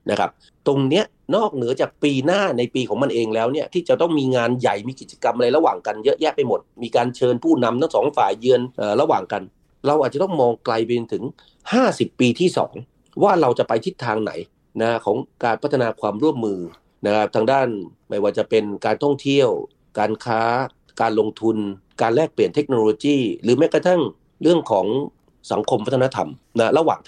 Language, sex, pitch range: Thai, male, 115-155 Hz